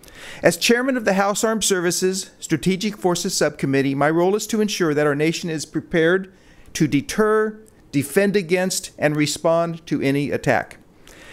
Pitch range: 155-200 Hz